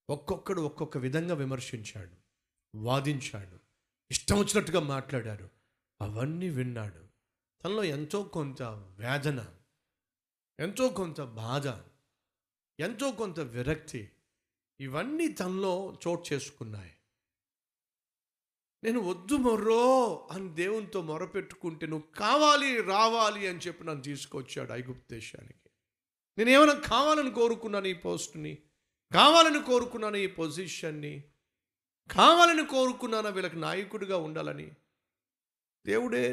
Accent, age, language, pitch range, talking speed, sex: native, 50-69, Telugu, 130-220 Hz, 90 wpm, male